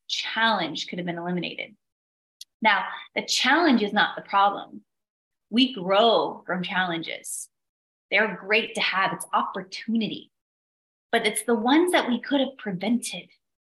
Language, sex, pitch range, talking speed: English, female, 195-255 Hz, 140 wpm